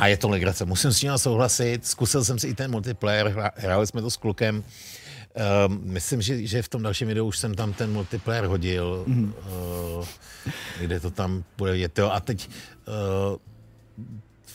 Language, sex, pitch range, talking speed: Czech, male, 100-130 Hz, 175 wpm